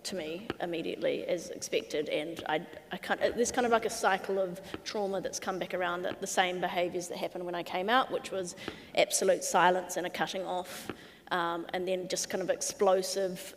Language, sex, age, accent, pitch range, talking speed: English, female, 20-39, Australian, 175-205 Hz, 200 wpm